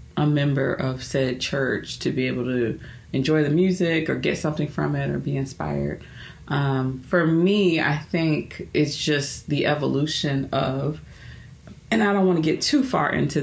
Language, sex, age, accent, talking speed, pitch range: English, female, 20-39, American, 175 wpm, 135-165 Hz